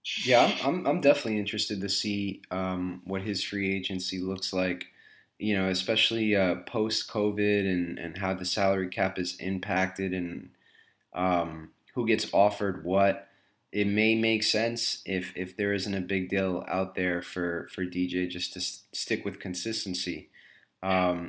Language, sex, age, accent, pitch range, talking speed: English, male, 20-39, American, 95-110 Hz, 160 wpm